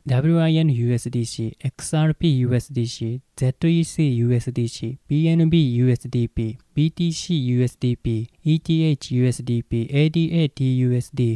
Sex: male